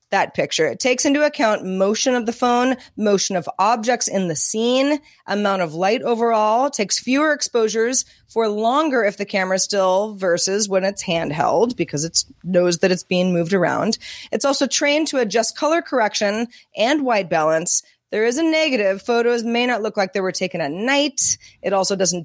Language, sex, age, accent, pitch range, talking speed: English, female, 30-49, American, 180-245 Hz, 185 wpm